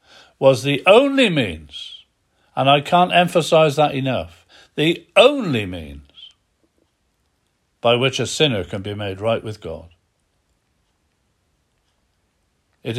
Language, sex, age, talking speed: English, male, 60-79, 110 wpm